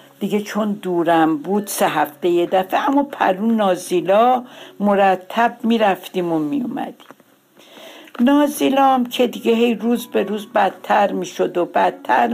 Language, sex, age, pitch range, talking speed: Persian, female, 60-79, 185-255 Hz, 140 wpm